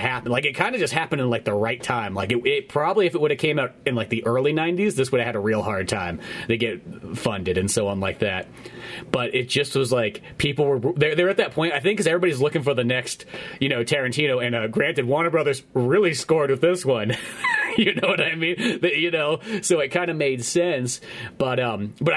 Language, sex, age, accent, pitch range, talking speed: English, male, 30-49, American, 120-150 Hz, 250 wpm